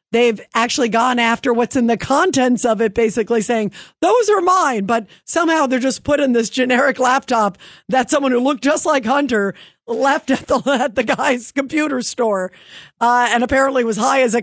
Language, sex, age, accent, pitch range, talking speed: English, female, 50-69, American, 200-255 Hz, 185 wpm